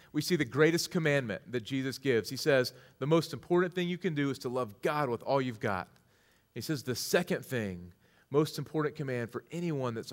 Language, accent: English, American